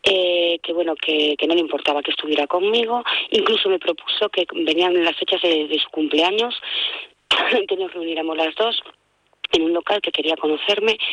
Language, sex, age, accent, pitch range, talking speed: Spanish, female, 20-39, Spanish, 160-190 Hz, 180 wpm